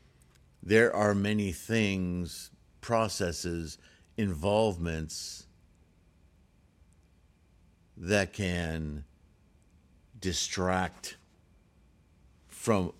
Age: 60-79